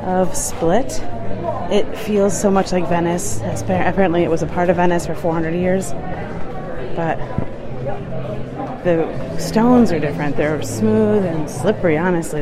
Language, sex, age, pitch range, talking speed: English, female, 30-49, 170-220 Hz, 135 wpm